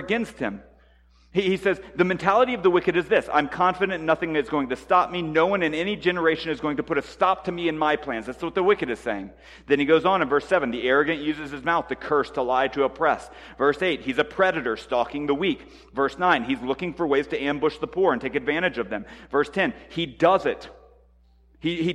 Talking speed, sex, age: 240 wpm, male, 40-59